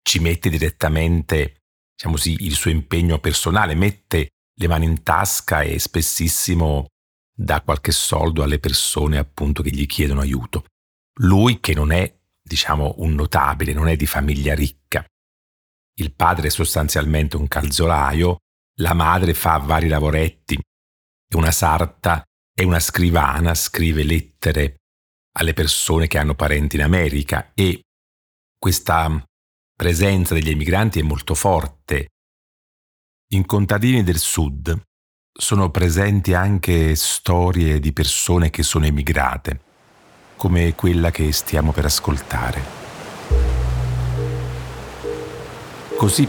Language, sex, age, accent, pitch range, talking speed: Italian, male, 40-59, native, 75-90 Hz, 120 wpm